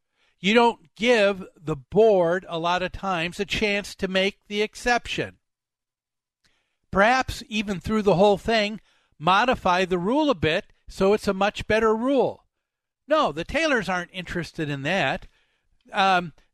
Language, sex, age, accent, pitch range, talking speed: English, male, 50-69, American, 165-215 Hz, 145 wpm